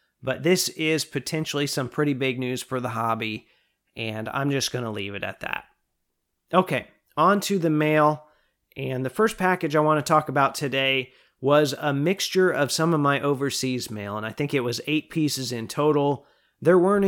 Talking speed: 195 wpm